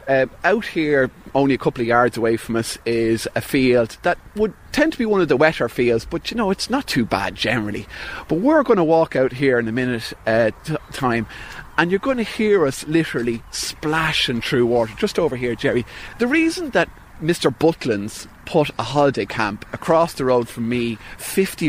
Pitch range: 125-170 Hz